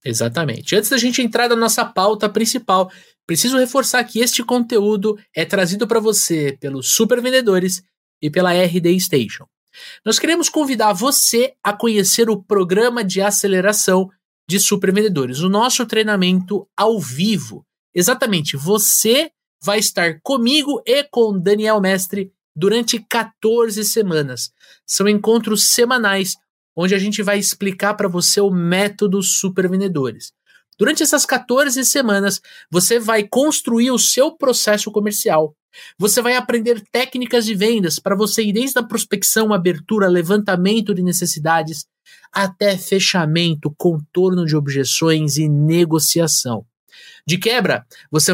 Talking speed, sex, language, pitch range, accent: 135 wpm, male, Portuguese, 185-235 Hz, Brazilian